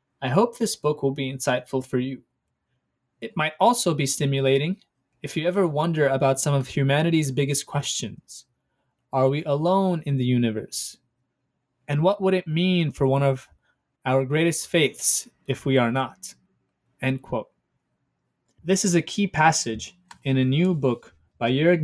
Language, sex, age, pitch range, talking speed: English, male, 20-39, 130-155 Hz, 160 wpm